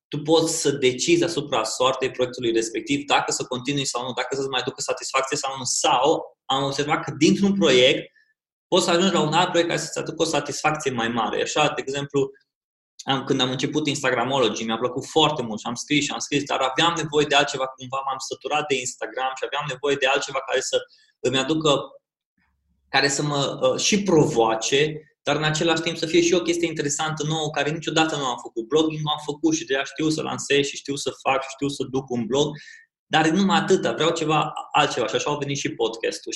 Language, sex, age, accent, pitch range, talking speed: Romanian, male, 20-39, native, 135-165 Hz, 215 wpm